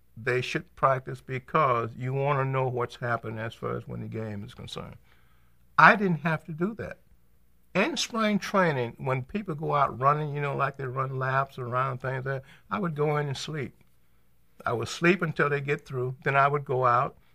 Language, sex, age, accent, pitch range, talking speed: English, male, 60-79, American, 120-155 Hz, 200 wpm